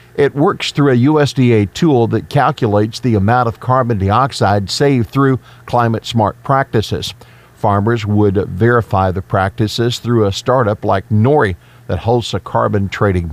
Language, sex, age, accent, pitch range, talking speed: English, male, 50-69, American, 105-125 Hz, 145 wpm